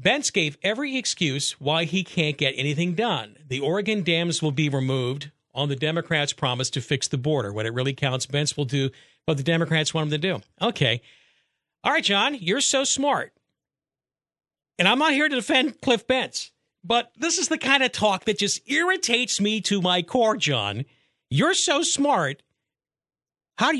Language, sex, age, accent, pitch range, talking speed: English, male, 50-69, American, 140-215 Hz, 185 wpm